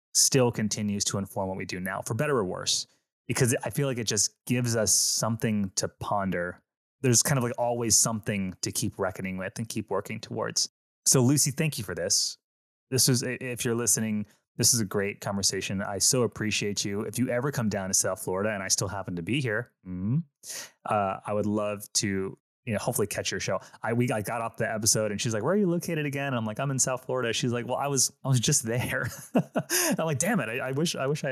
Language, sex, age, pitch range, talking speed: English, male, 20-39, 100-130 Hz, 240 wpm